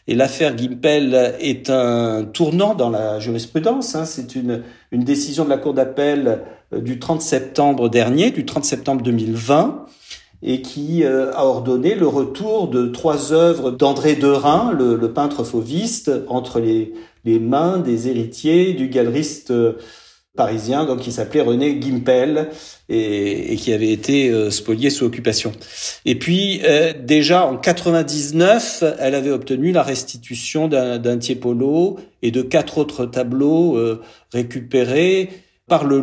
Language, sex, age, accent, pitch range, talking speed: French, male, 50-69, French, 120-155 Hz, 150 wpm